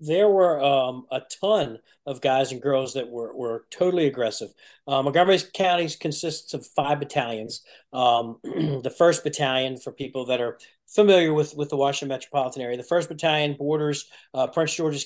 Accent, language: American, English